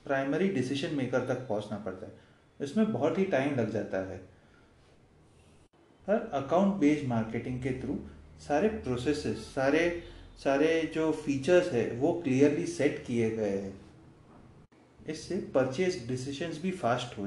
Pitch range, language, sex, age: 110-155 Hz, Hindi, male, 30-49